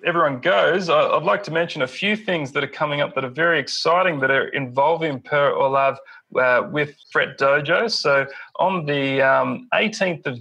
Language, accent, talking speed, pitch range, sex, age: English, Australian, 185 wpm, 130-160 Hz, male, 30-49